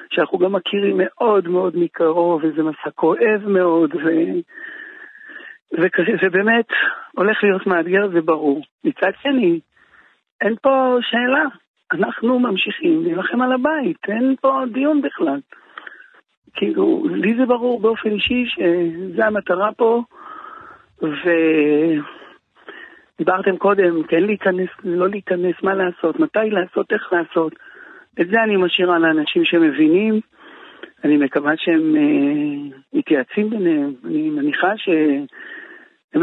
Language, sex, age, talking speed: Hebrew, male, 60-79, 115 wpm